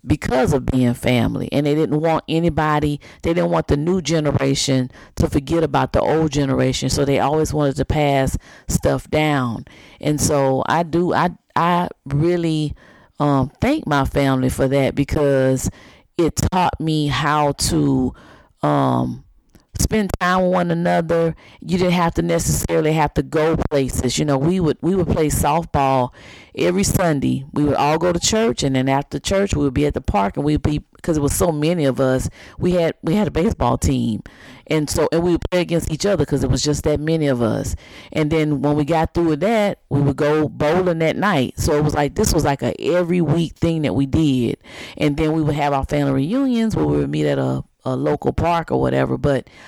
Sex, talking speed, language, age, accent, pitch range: female, 205 wpm, English, 40-59, American, 135-170 Hz